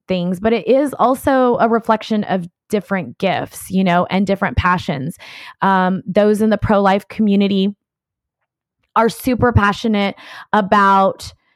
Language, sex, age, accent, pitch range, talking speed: English, female, 20-39, American, 190-225 Hz, 130 wpm